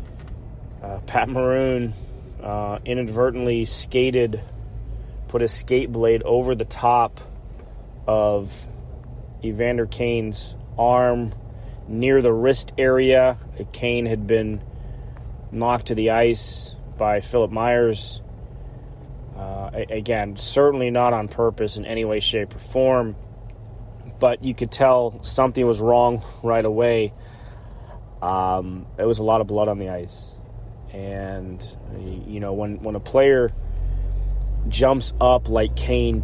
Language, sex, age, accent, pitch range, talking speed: English, male, 30-49, American, 105-120 Hz, 120 wpm